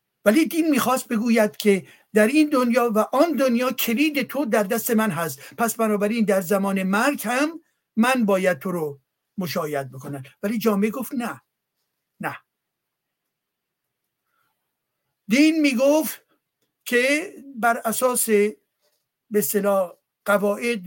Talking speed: 120 wpm